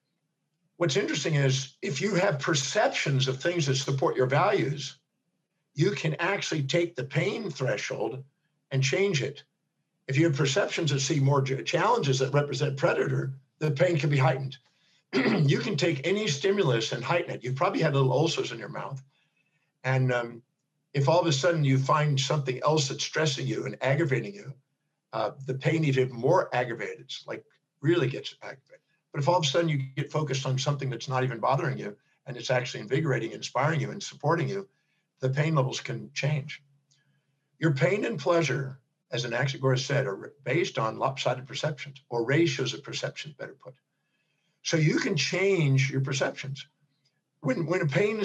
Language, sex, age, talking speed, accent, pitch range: English, male, 50-69, 180 wpm, American, 135-165 Hz